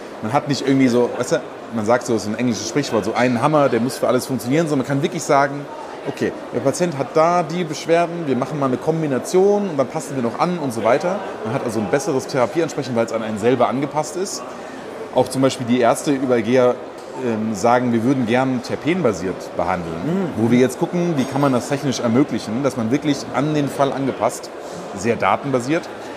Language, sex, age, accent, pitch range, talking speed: German, male, 30-49, German, 120-145 Hz, 220 wpm